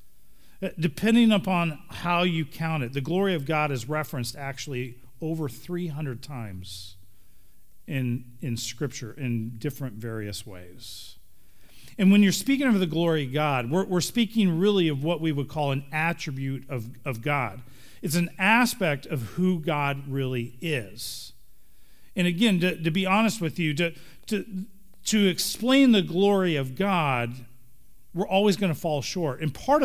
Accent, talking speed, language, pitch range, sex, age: American, 155 wpm, English, 125-180 Hz, male, 40-59